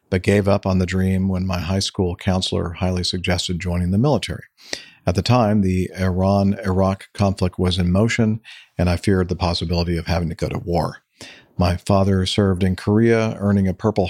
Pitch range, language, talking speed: 90-110 Hz, English, 185 wpm